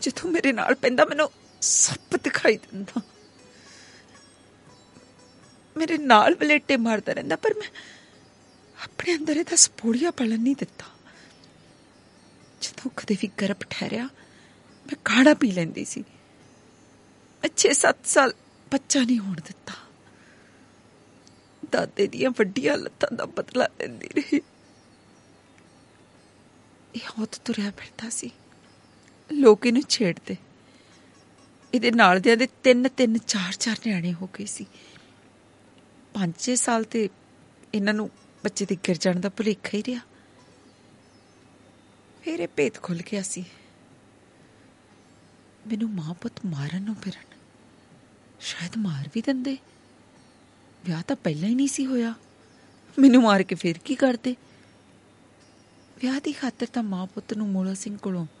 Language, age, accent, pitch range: Hindi, 30-49, native, 195-270 Hz